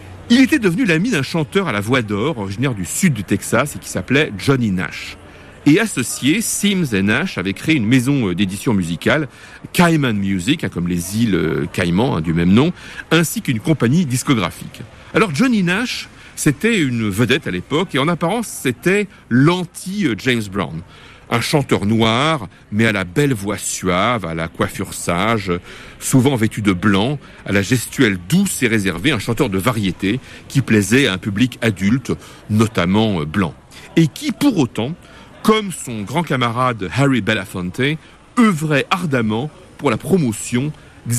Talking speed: 160 wpm